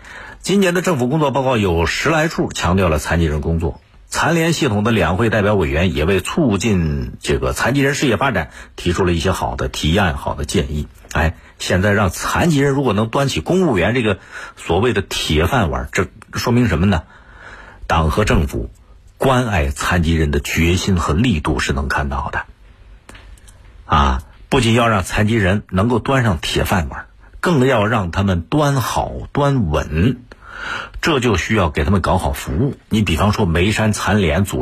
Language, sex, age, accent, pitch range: Chinese, male, 50-69, native, 85-120 Hz